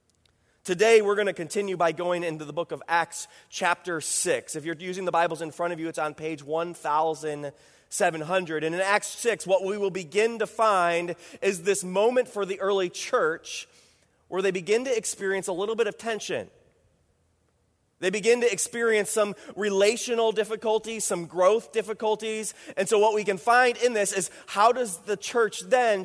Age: 30-49